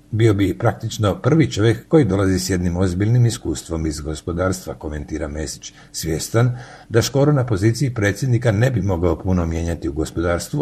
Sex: male